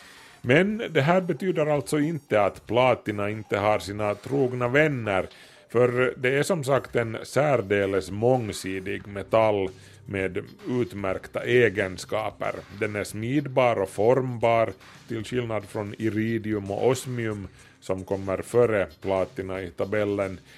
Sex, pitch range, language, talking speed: male, 100-130 Hz, Swedish, 120 wpm